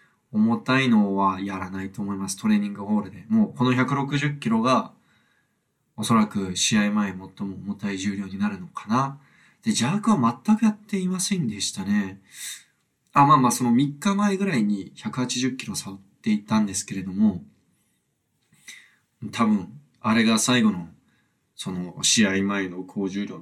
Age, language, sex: 20-39, Japanese, male